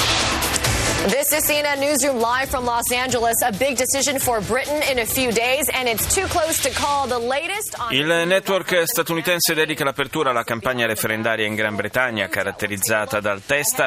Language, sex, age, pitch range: Italian, male, 30-49, 110-150 Hz